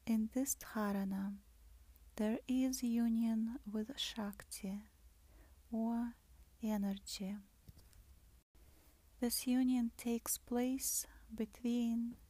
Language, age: English, 30-49